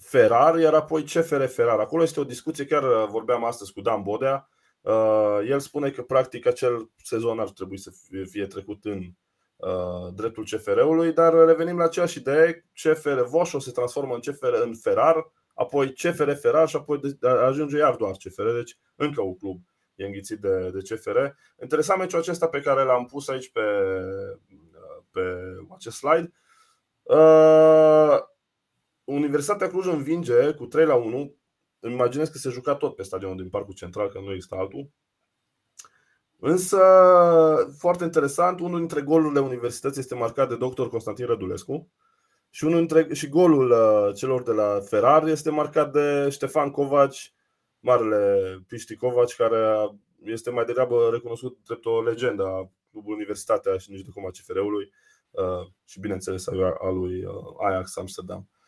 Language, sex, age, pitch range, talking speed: Romanian, male, 20-39, 115-165 Hz, 145 wpm